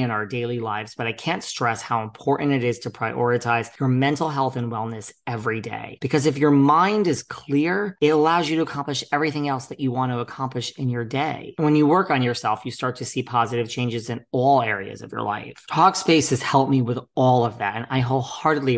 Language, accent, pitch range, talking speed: English, American, 115-140 Hz, 225 wpm